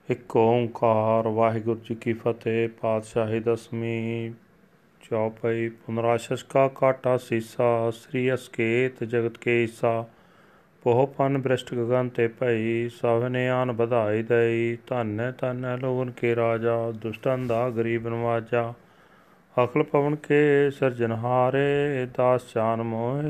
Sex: male